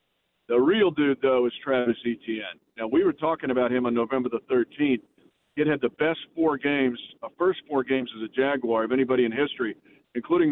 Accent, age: American, 50-69